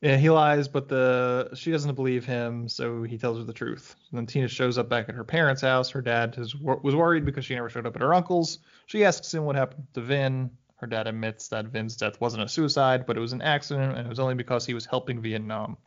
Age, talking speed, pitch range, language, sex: 20-39, 255 wpm, 120-150 Hz, English, male